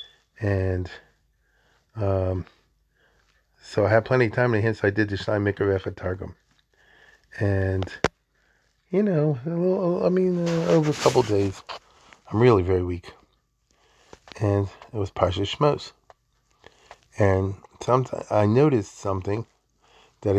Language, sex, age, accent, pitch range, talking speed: English, male, 40-59, American, 95-110 Hz, 135 wpm